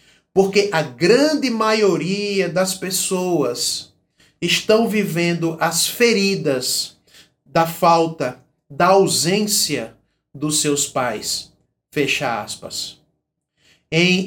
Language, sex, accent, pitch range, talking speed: Portuguese, male, Brazilian, 155-210 Hz, 85 wpm